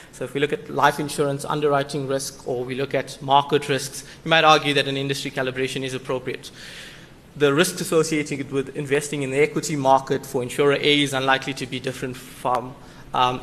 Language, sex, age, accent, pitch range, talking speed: English, male, 20-39, South African, 140-160 Hz, 190 wpm